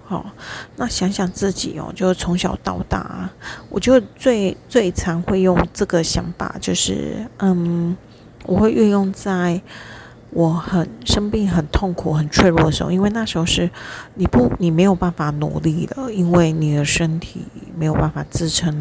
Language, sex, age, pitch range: Chinese, female, 30-49, 160-185 Hz